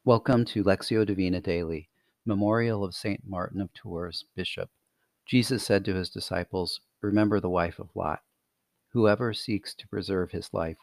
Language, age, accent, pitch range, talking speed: English, 40-59, American, 90-105 Hz, 155 wpm